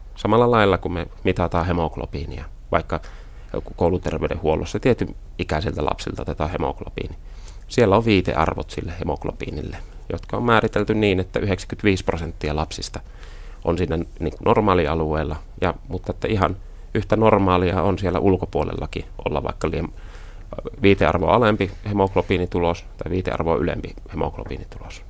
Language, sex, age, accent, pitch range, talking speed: Finnish, male, 30-49, native, 80-100 Hz, 115 wpm